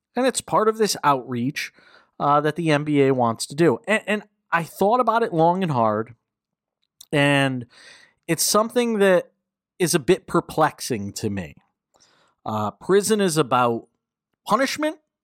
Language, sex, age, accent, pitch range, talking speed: English, male, 40-59, American, 120-170 Hz, 145 wpm